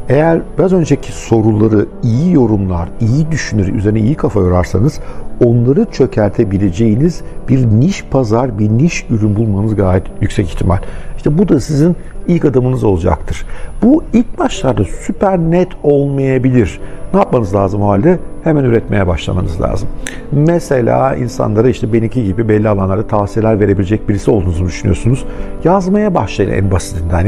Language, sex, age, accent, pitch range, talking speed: Turkish, male, 60-79, native, 95-135 Hz, 135 wpm